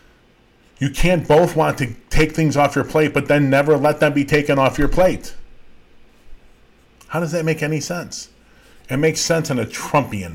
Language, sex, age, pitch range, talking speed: English, male, 40-59, 100-145 Hz, 185 wpm